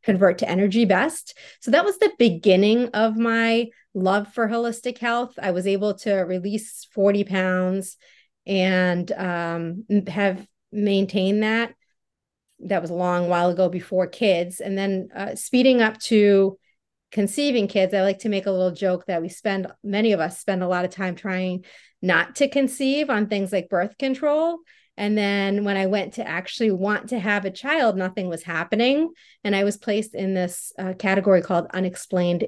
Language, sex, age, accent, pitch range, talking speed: English, female, 30-49, American, 185-220 Hz, 175 wpm